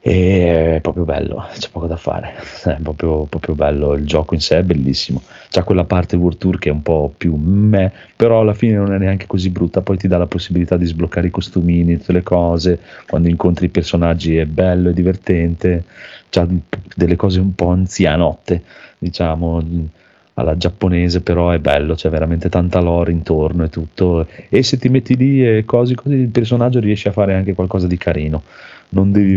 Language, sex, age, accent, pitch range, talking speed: Italian, male, 30-49, native, 85-100 Hz, 190 wpm